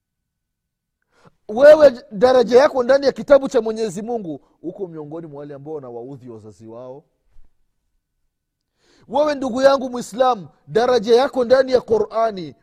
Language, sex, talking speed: Swahili, male, 125 wpm